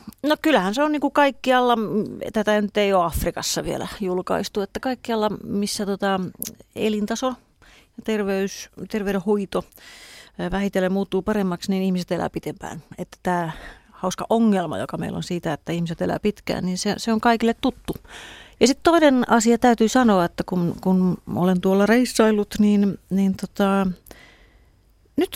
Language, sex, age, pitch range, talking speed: Finnish, female, 30-49, 180-225 Hz, 145 wpm